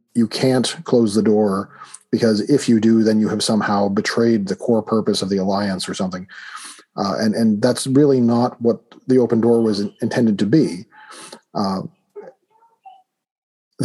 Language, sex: English, male